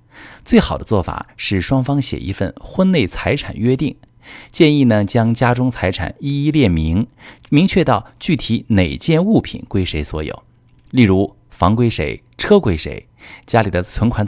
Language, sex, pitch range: Chinese, male, 90-125 Hz